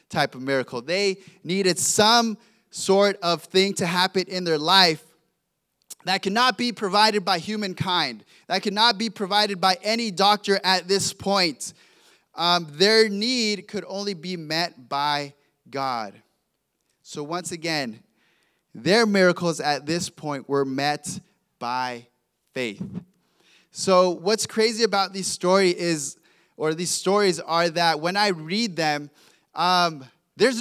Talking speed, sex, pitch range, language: 135 wpm, male, 170-205 Hz, English